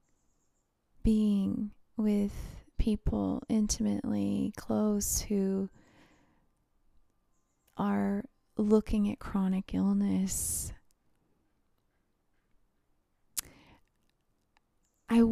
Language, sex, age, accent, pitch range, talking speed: English, female, 20-39, American, 195-230 Hz, 45 wpm